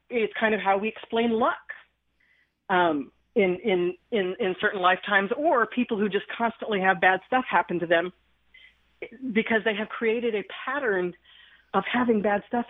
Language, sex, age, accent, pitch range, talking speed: English, female, 40-59, American, 185-240 Hz, 165 wpm